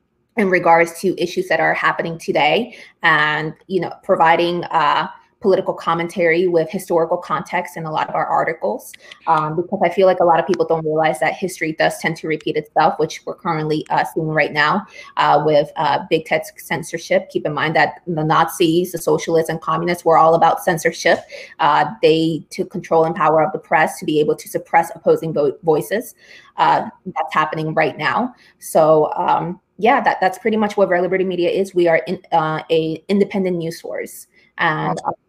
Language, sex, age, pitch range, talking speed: English, female, 20-39, 160-185 Hz, 190 wpm